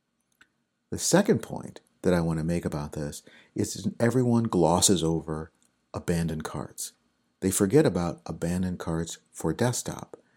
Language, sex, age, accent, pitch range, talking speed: English, male, 50-69, American, 80-110 Hz, 140 wpm